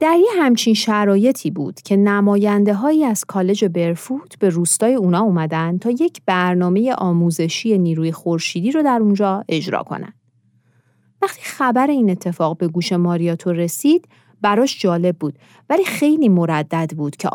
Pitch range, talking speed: 170-240 Hz, 140 wpm